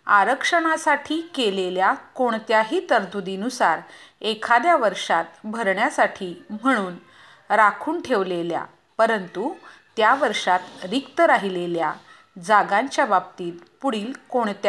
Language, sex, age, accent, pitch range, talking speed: Hindi, female, 40-59, native, 185-270 Hz, 65 wpm